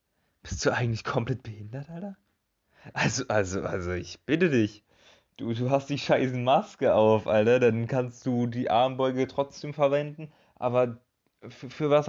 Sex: male